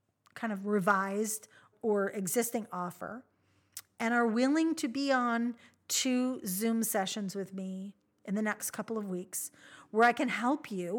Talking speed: 155 wpm